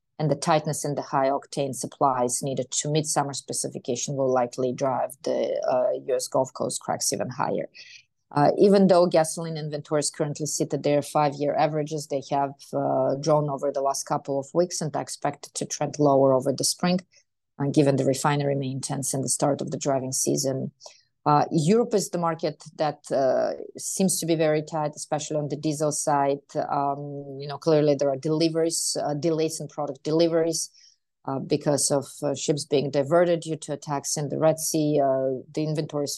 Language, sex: English, female